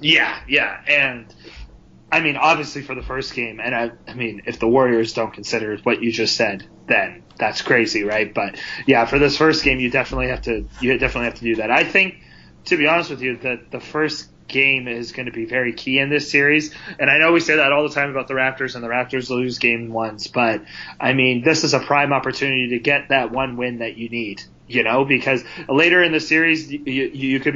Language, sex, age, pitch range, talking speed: English, male, 30-49, 120-150 Hz, 235 wpm